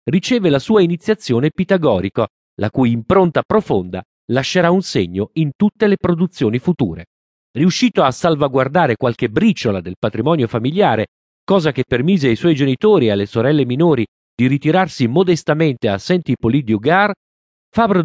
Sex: male